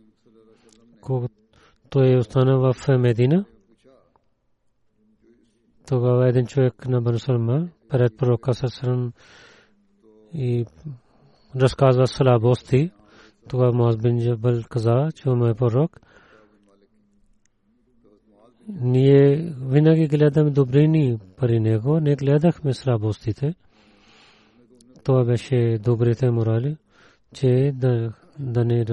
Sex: male